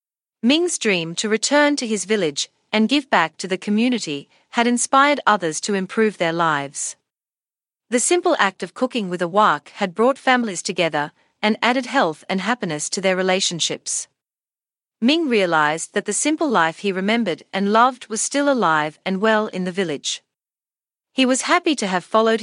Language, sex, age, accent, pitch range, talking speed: English, female, 40-59, Australian, 175-245 Hz, 170 wpm